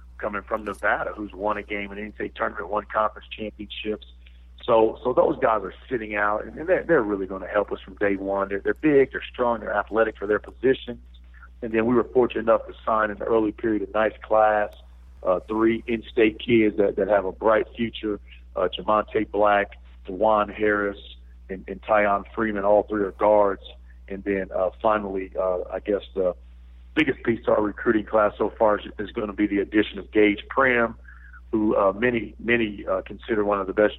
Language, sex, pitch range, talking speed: English, male, 95-110 Hz, 205 wpm